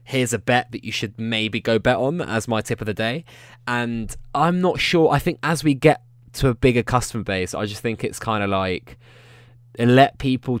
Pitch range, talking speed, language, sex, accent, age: 95-120 Hz, 225 wpm, English, male, British, 20-39